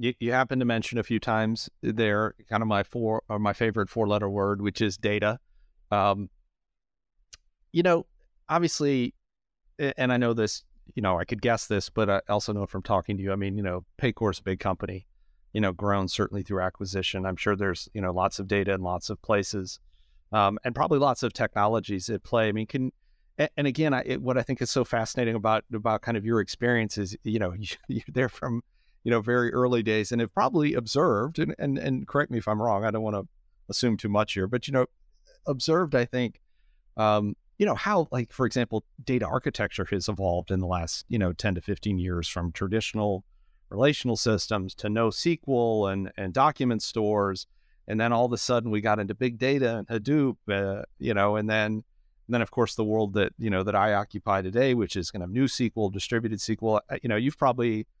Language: English